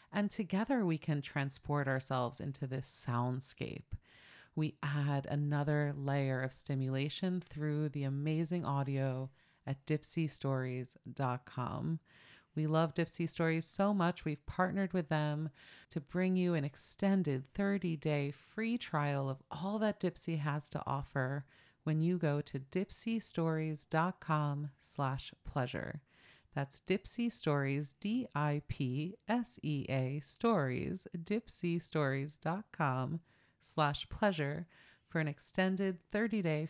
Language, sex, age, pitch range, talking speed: English, female, 30-49, 140-175 Hz, 100 wpm